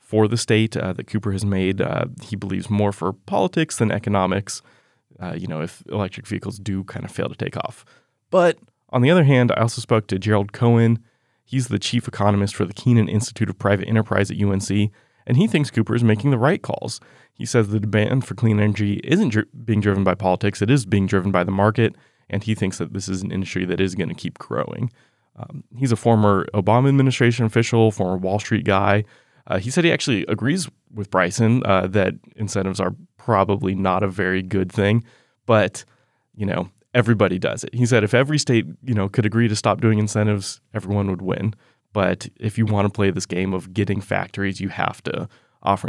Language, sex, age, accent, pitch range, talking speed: English, male, 20-39, American, 100-120 Hz, 210 wpm